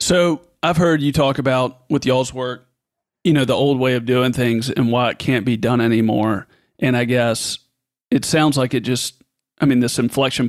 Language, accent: English, American